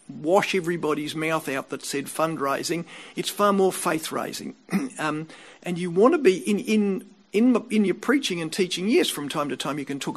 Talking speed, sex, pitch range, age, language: 195 wpm, male, 155-220 Hz, 50-69, English